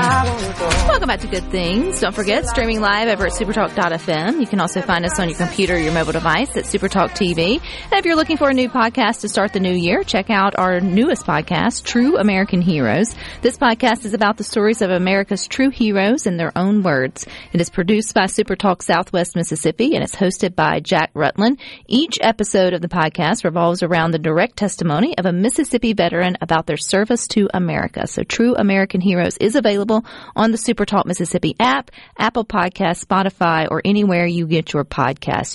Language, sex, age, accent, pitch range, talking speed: English, female, 40-59, American, 175-220 Hz, 195 wpm